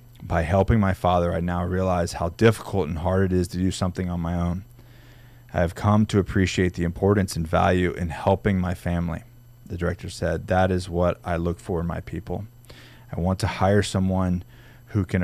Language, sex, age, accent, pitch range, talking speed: English, male, 30-49, American, 90-120 Hz, 195 wpm